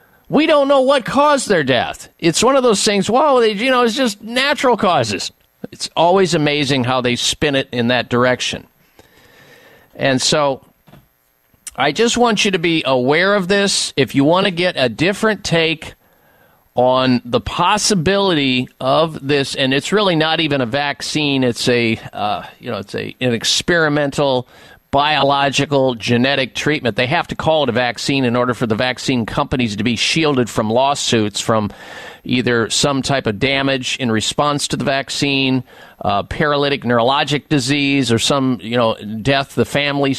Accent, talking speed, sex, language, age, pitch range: American, 170 wpm, male, English, 50-69, 125-170 Hz